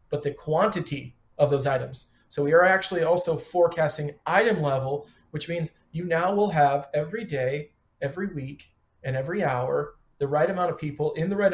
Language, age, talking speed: English, 40-59, 180 wpm